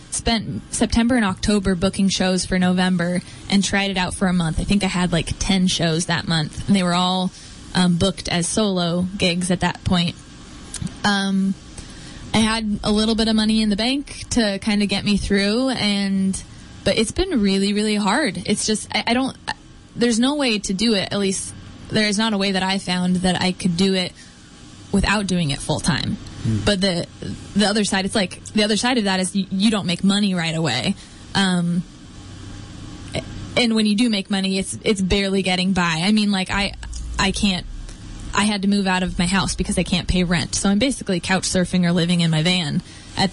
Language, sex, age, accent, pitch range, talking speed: English, female, 10-29, American, 180-210 Hz, 210 wpm